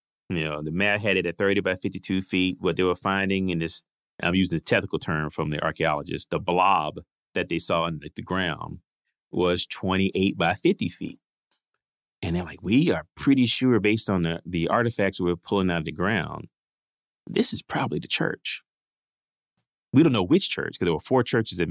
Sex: male